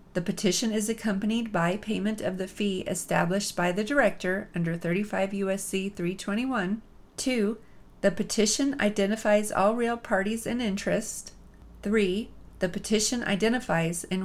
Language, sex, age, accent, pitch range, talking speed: English, female, 40-59, American, 185-220 Hz, 130 wpm